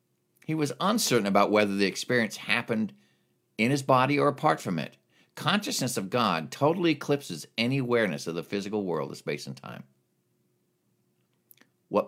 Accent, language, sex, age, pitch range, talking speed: American, English, male, 50-69, 85-115 Hz, 155 wpm